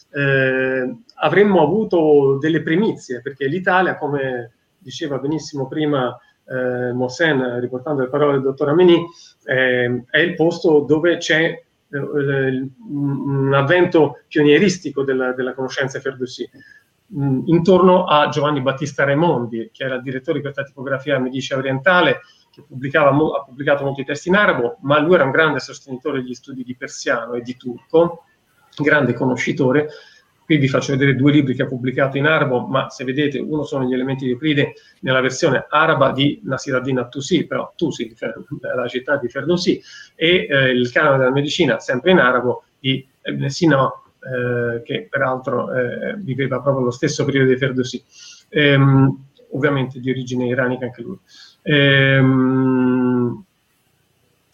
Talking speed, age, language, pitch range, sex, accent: 150 wpm, 40-59, Italian, 130-155 Hz, male, native